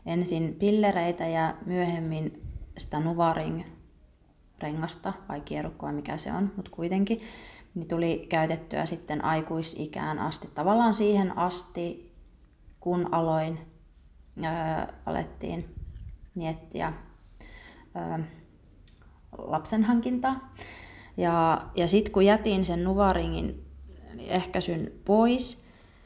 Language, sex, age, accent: Finnish, female, 20-39, native